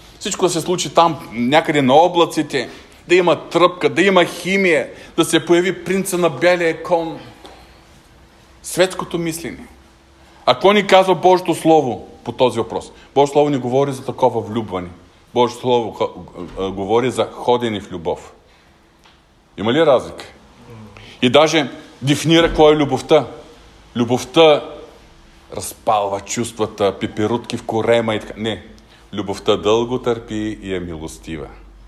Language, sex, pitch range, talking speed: Bulgarian, male, 110-170 Hz, 140 wpm